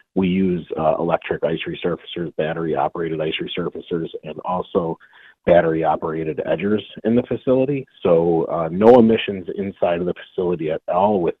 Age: 30-49